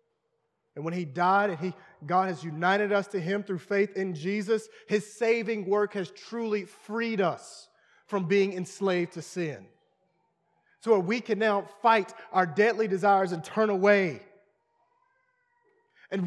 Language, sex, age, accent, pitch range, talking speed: English, male, 30-49, American, 185-250 Hz, 145 wpm